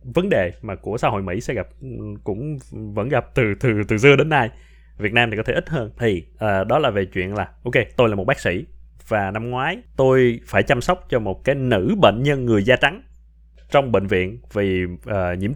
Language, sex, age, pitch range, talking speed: Vietnamese, male, 20-39, 95-135 Hz, 230 wpm